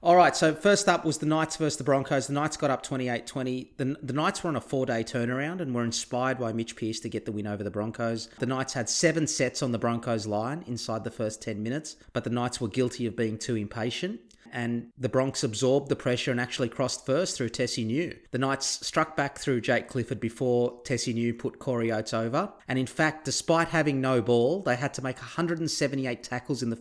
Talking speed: 230 wpm